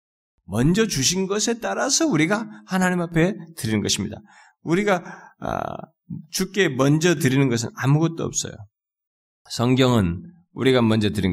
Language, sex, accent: Korean, male, native